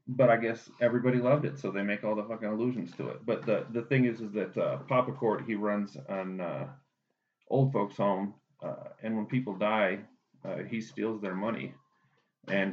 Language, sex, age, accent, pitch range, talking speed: English, male, 30-49, American, 95-110 Hz, 205 wpm